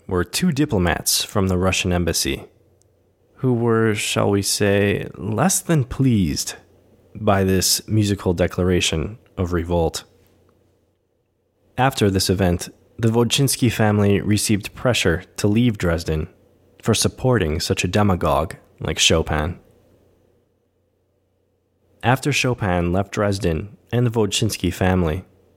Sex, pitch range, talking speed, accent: male, 95-120 Hz, 110 wpm, American